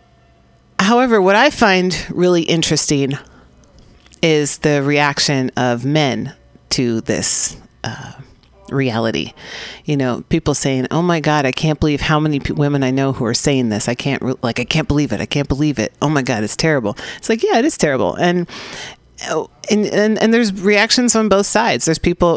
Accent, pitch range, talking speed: American, 130-180 Hz, 180 wpm